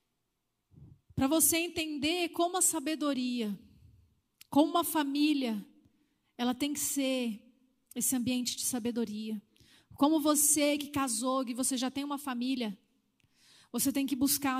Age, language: 30-49, Portuguese